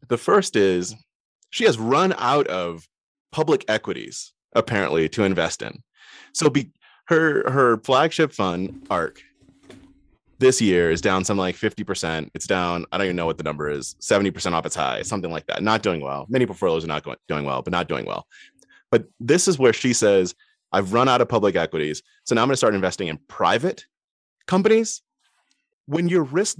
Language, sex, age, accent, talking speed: English, male, 30-49, American, 190 wpm